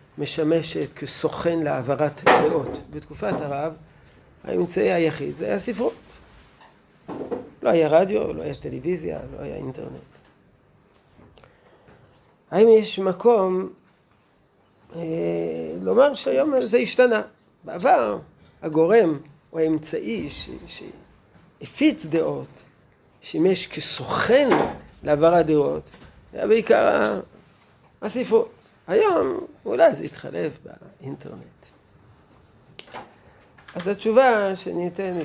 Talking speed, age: 85 wpm, 40-59